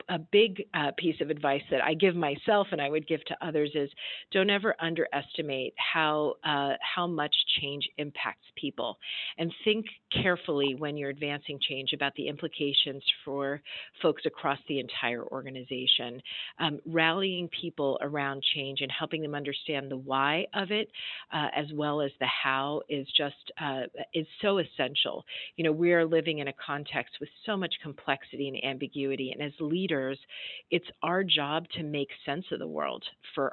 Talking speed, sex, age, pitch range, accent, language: 170 wpm, female, 40-59, 140-175 Hz, American, English